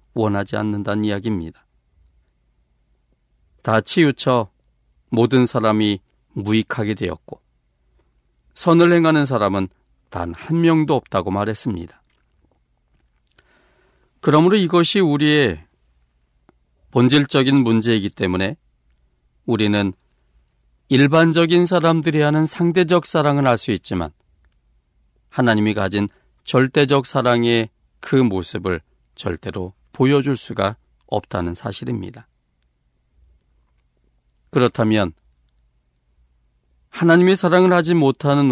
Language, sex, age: Korean, male, 40-59